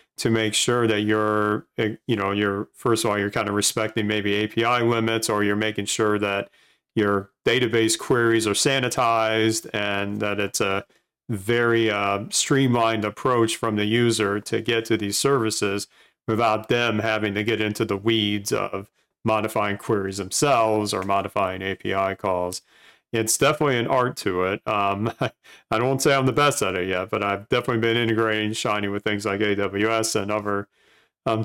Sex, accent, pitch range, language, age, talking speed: male, American, 105-115 Hz, English, 40-59, 170 wpm